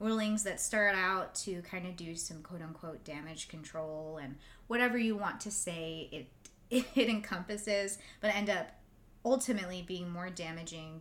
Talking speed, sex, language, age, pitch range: 160 wpm, female, English, 20-39, 170-220 Hz